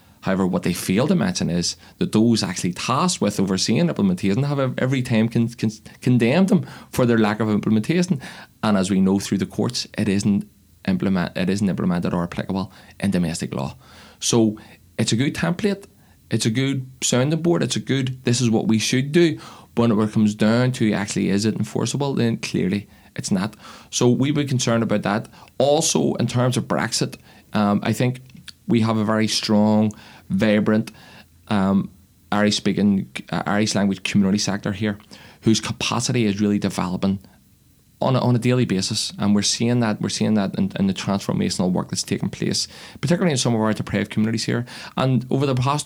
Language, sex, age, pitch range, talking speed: English, male, 30-49, 100-125 Hz, 185 wpm